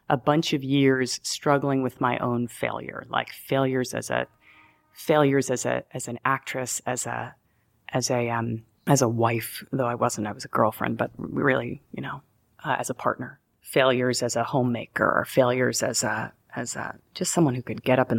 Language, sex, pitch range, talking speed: English, female, 125-160 Hz, 195 wpm